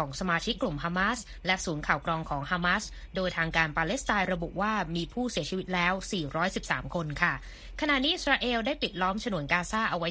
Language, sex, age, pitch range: Thai, female, 20-39, 170-215 Hz